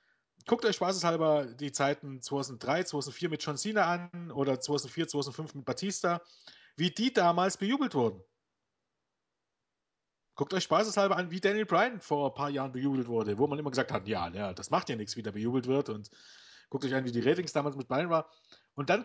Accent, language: German, German